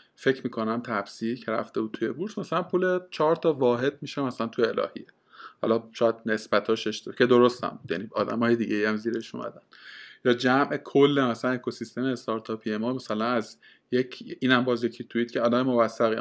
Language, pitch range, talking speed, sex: Persian, 115-140 Hz, 165 wpm, male